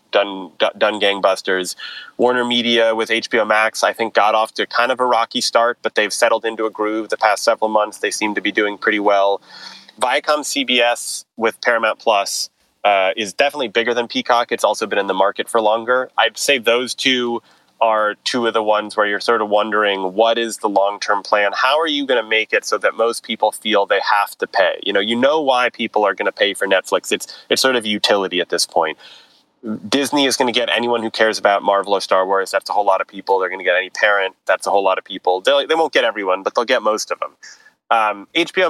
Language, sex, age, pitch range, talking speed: English, male, 30-49, 105-130 Hz, 235 wpm